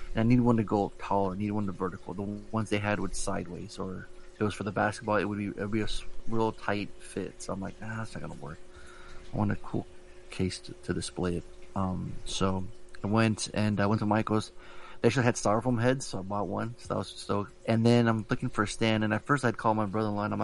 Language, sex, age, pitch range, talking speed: English, male, 30-49, 100-115 Hz, 265 wpm